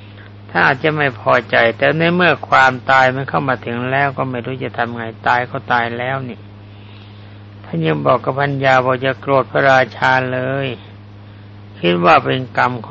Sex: male